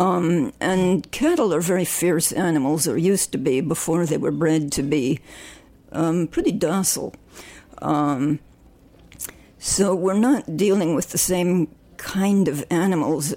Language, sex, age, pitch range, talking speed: English, female, 50-69, 160-205 Hz, 140 wpm